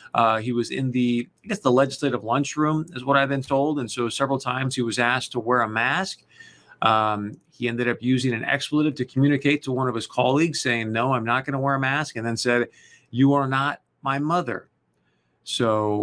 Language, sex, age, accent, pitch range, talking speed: English, male, 40-59, American, 120-140 Hz, 215 wpm